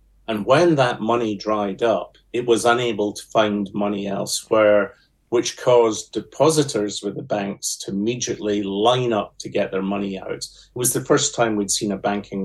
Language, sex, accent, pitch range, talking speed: English, male, British, 100-115 Hz, 180 wpm